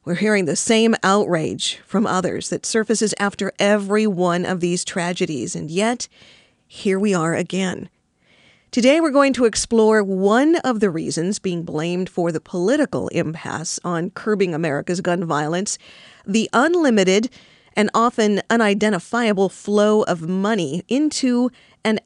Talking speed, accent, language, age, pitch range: 140 wpm, American, English, 40-59, 175-225 Hz